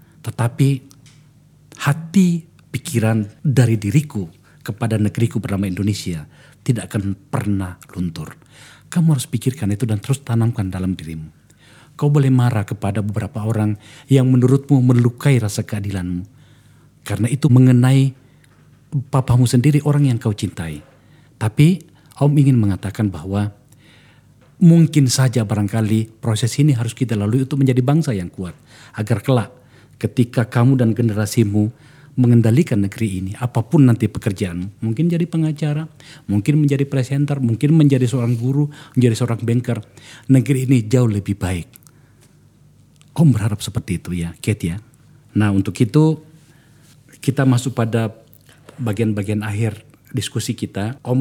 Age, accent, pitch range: 50-69, native, 110-140 Hz